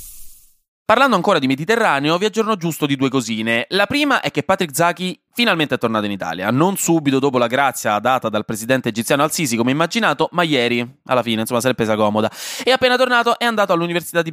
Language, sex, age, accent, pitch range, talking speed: Italian, male, 20-39, native, 115-170 Hz, 210 wpm